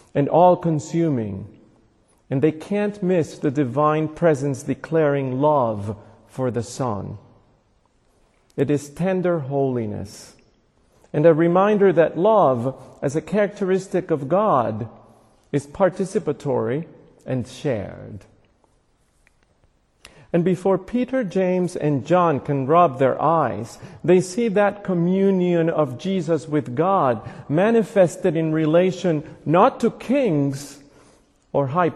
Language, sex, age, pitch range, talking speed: English, male, 40-59, 130-180 Hz, 110 wpm